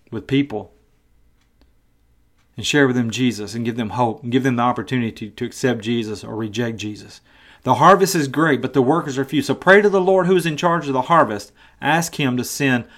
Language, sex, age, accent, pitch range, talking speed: English, male, 40-59, American, 120-155 Hz, 220 wpm